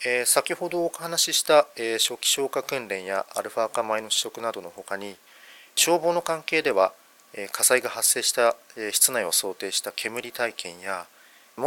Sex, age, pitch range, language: male, 40-59, 110-140 Hz, Japanese